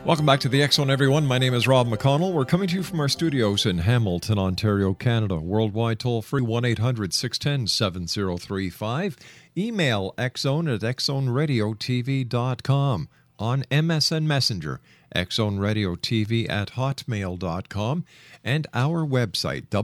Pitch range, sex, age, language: 95-140 Hz, male, 50-69, English